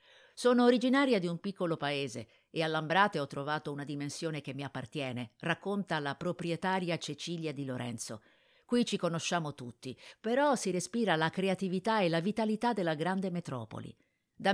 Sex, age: female, 50-69